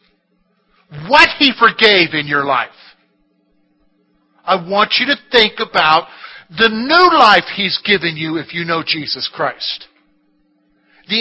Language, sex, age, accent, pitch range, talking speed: English, male, 50-69, American, 160-240 Hz, 130 wpm